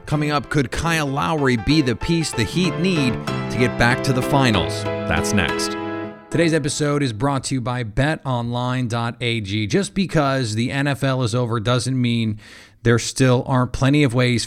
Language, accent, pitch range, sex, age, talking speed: English, American, 110-145 Hz, male, 30-49, 170 wpm